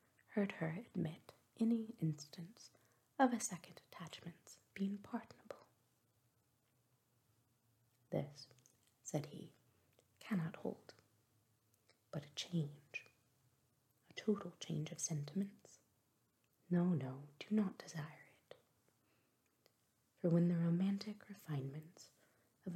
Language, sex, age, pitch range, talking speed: English, female, 30-49, 130-190 Hz, 95 wpm